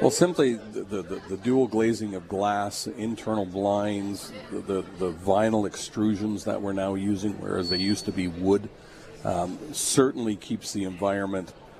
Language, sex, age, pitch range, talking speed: English, male, 50-69, 95-105 Hz, 160 wpm